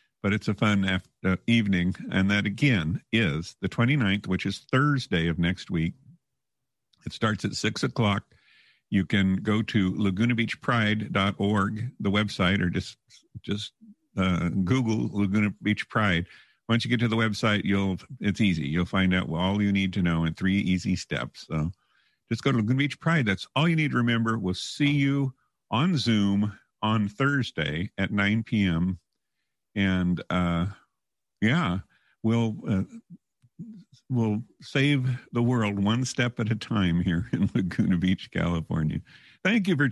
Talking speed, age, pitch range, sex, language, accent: 160 wpm, 50-69, 95-125 Hz, male, English, American